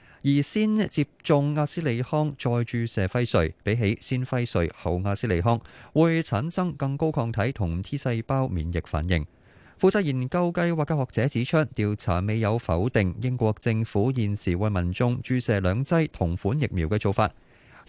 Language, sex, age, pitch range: Chinese, male, 20-39, 95-140 Hz